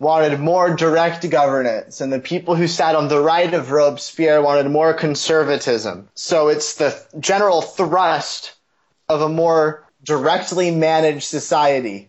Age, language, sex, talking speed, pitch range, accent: 30-49, English, male, 140 wpm, 145-165 Hz, American